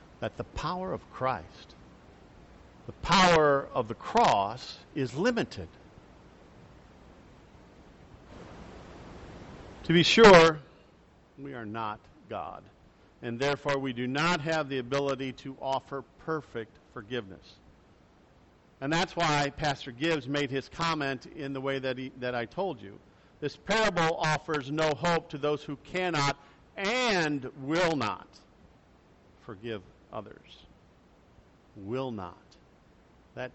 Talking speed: 115 wpm